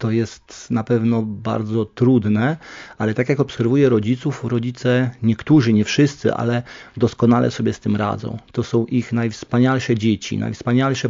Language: Polish